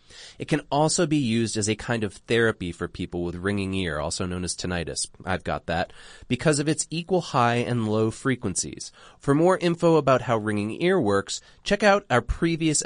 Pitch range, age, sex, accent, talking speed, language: 100-160 Hz, 30-49, male, American, 195 wpm, English